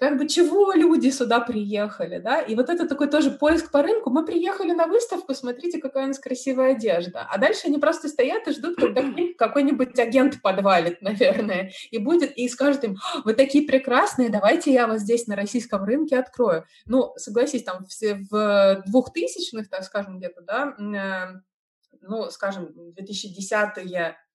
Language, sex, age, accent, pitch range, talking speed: Russian, female, 20-39, native, 195-265 Hz, 160 wpm